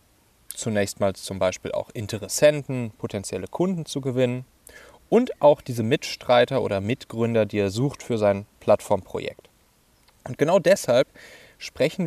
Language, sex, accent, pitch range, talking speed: German, male, German, 105-140 Hz, 130 wpm